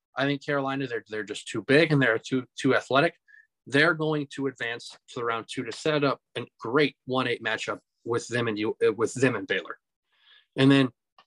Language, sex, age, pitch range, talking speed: English, male, 20-39, 125-150 Hz, 195 wpm